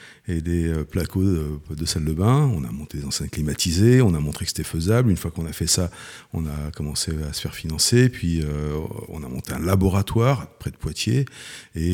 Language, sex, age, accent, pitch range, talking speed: French, male, 50-69, French, 75-95 Hz, 220 wpm